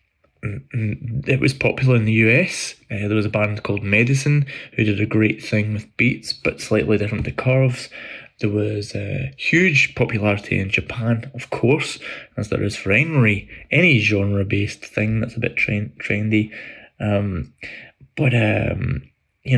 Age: 20-39